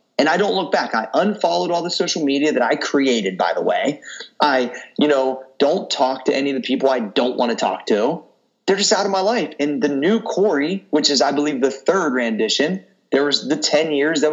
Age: 30-49